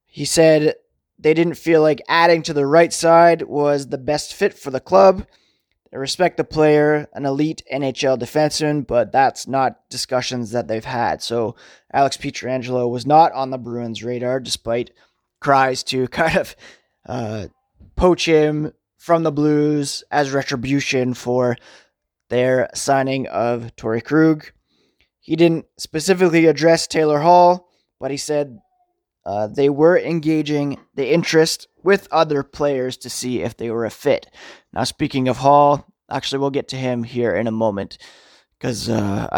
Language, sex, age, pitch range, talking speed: English, male, 20-39, 125-165 Hz, 155 wpm